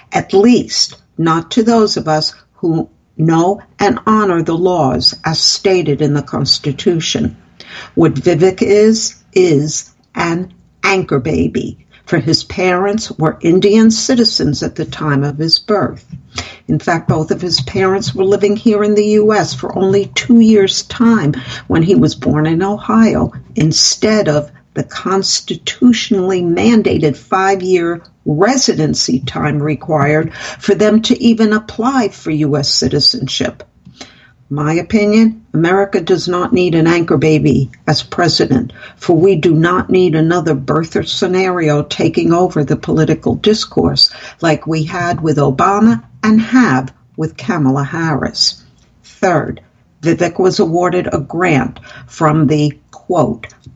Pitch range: 155-200 Hz